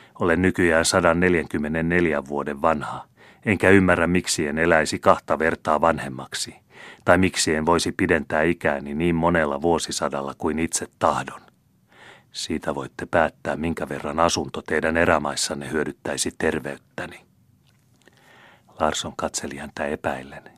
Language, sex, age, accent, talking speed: Finnish, male, 30-49, native, 115 wpm